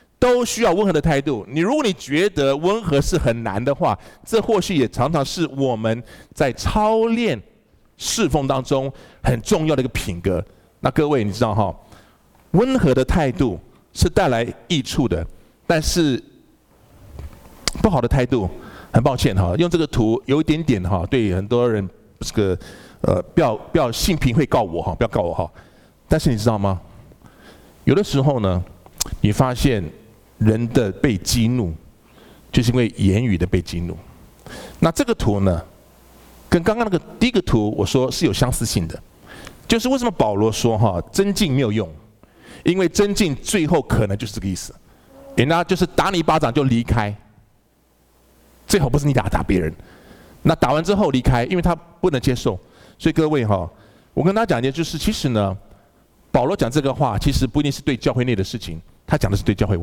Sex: male